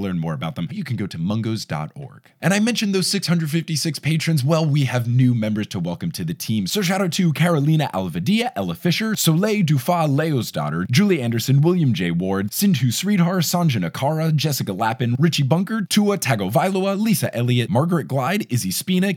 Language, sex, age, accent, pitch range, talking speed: English, male, 20-39, American, 105-160 Hz, 180 wpm